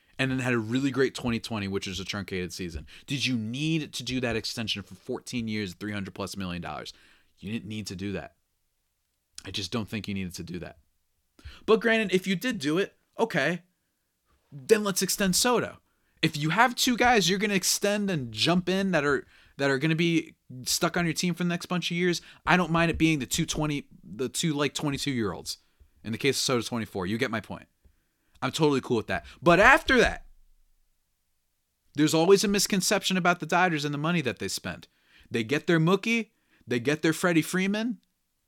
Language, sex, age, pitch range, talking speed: English, male, 30-49, 100-165 Hz, 210 wpm